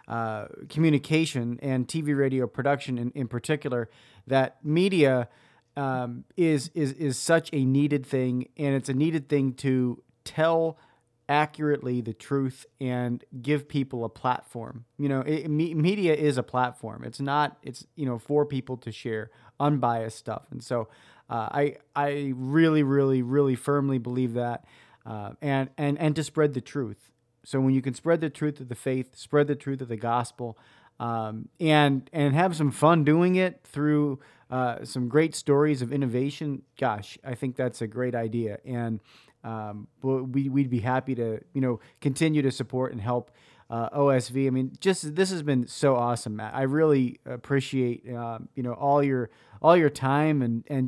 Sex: male